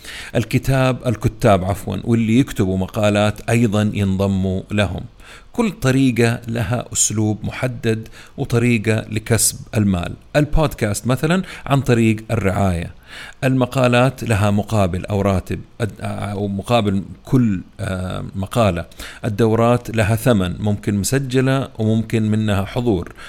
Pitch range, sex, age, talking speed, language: 100-125 Hz, male, 40-59, 100 wpm, Arabic